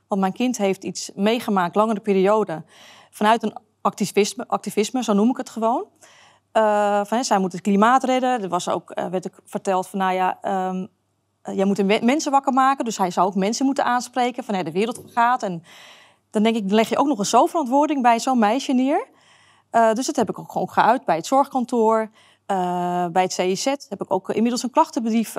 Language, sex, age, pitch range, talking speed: Dutch, female, 30-49, 190-240 Hz, 210 wpm